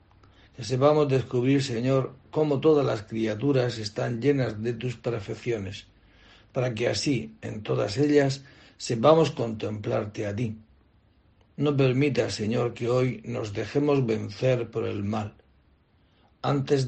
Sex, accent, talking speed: male, Spanish, 120 wpm